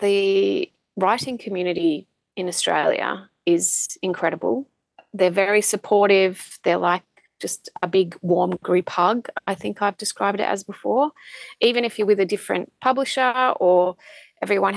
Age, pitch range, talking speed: 30-49, 170-200 Hz, 140 wpm